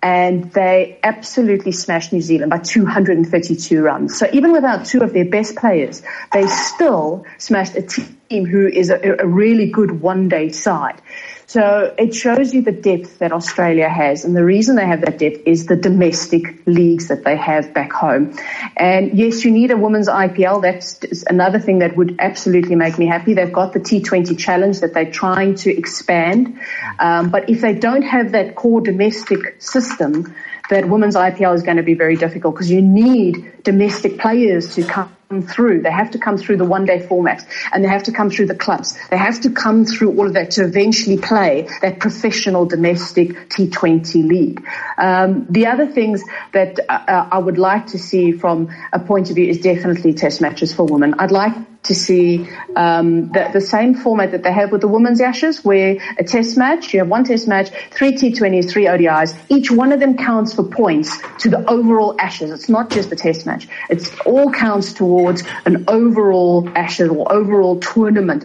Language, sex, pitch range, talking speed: English, female, 175-220 Hz, 190 wpm